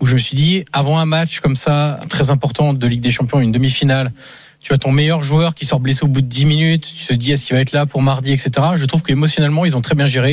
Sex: male